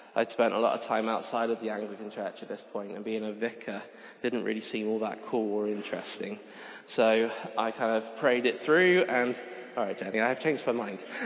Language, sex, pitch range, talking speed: English, male, 110-120 Hz, 220 wpm